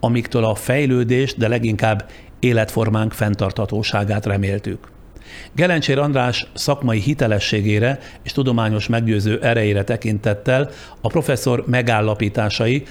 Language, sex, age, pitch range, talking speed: Hungarian, male, 60-79, 105-130 Hz, 95 wpm